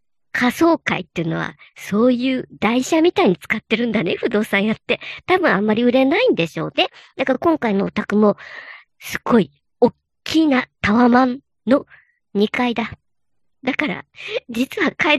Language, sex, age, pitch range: Japanese, male, 40-59, 205-295 Hz